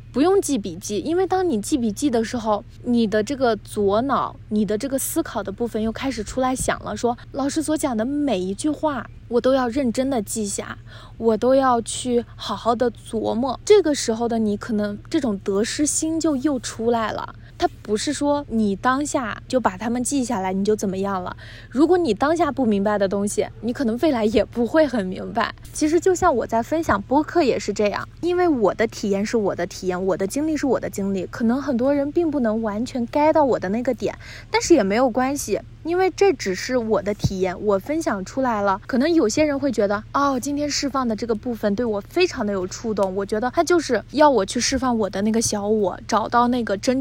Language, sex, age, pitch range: Chinese, female, 20-39, 215-290 Hz